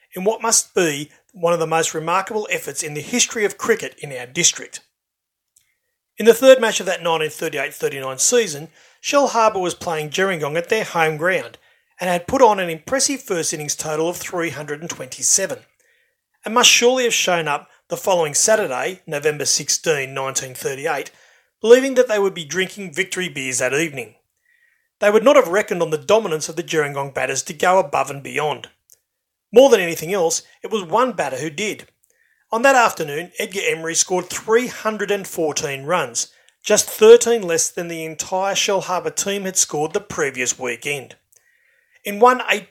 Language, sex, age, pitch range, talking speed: English, male, 40-59, 160-235 Hz, 170 wpm